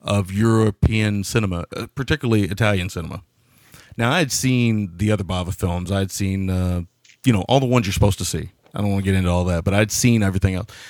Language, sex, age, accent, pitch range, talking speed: English, male, 30-49, American, 95-115 Hz, 210 wpm